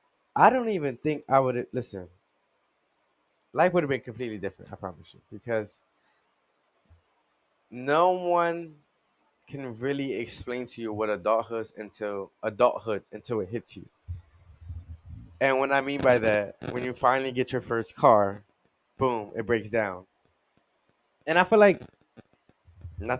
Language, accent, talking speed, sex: English, American, 140 wpm, male